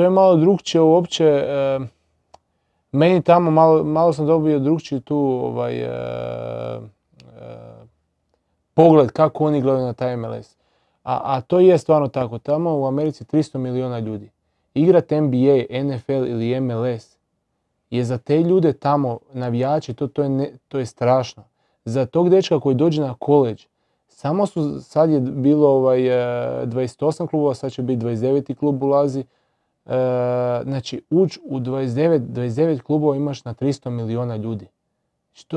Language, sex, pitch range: Croatian, male, 125-150 Hz